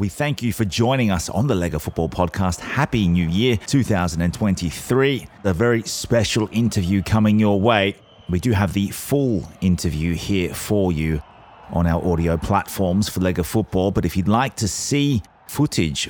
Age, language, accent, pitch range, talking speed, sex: 30-49, English, Australian, 85-105 Hz, 170 wpm, male